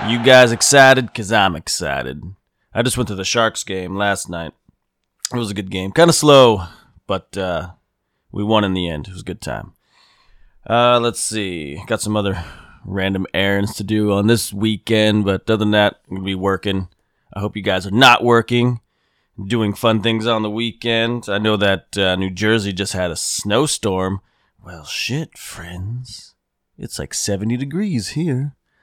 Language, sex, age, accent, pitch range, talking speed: English, male, 30-49, American, 95-120 Hz, 185 wpm